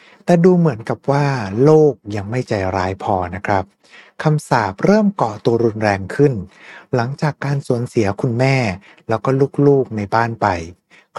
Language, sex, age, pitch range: Thai, male, 60-79, 105-145 Hz